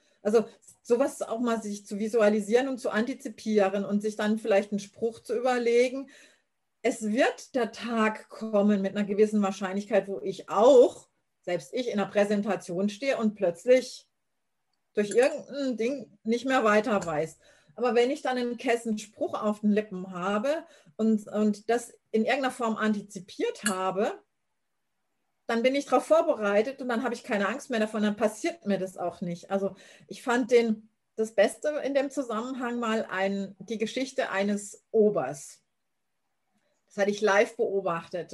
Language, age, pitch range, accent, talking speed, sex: German, 40-59, 205-255 Hz, German, 160 wpm, female